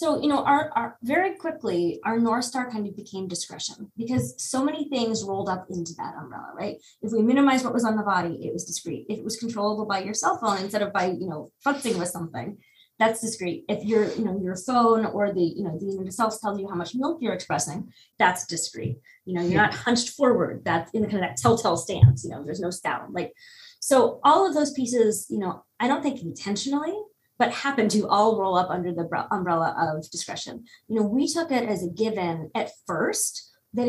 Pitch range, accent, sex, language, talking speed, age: 175-240 Hz, American, female, English, 225 wpm, 20-39